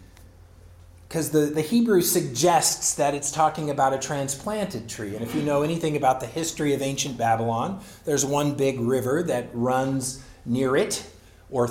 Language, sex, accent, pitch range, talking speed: English, male, American, 115-145 Hz, 165 wpm